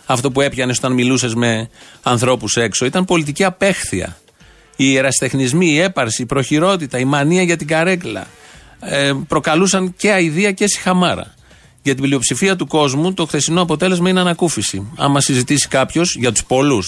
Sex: male